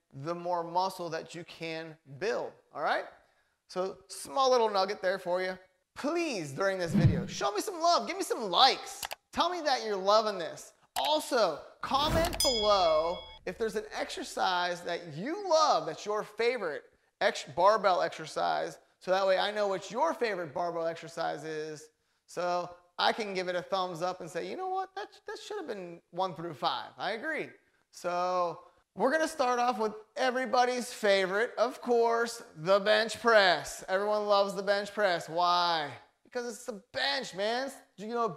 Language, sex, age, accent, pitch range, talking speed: English, male, 30-49, American, 175-235 Hz, 170 wpm